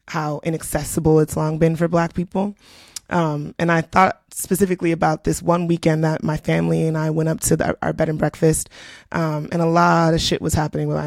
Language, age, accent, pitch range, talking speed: English, 20-39, American, 150-170 Hz, 200 wpm